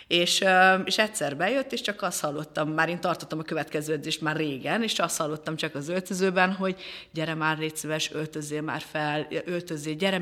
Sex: female